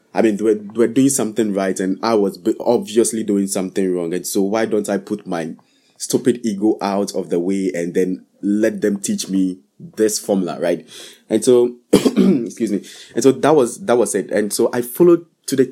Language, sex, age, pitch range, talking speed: English, male, 20-39, 100-120 Hz, 210 wpm